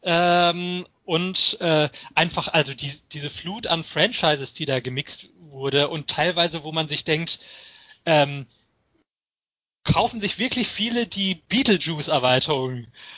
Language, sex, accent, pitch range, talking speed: German, male, German, 150-185 Hz, 120 wpm